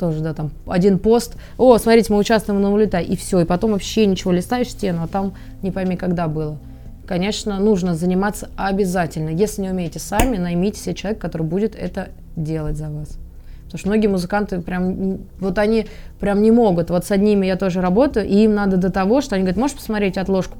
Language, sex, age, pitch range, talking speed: Russian, female, 20-39, 175-210 Hz, 195 wpm